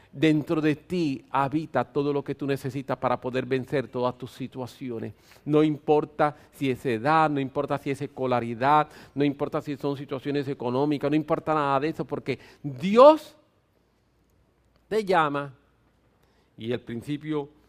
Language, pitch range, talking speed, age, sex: English, 135-170 Hz, 145 wpm, 50-69, male